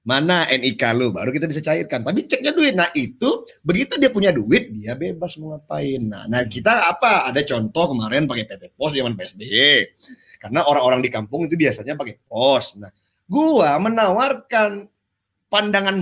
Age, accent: 30-49, native